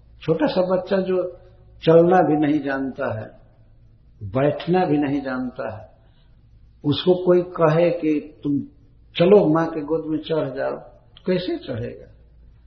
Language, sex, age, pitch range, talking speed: Hindi, male, 60-79, 120-185 Hz, 135 wpm